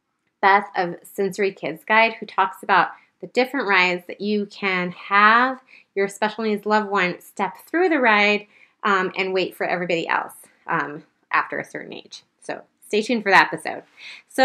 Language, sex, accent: English, female, American